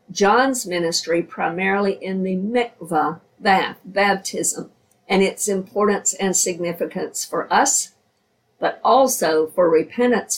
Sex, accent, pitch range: female, American, 180-230 Hz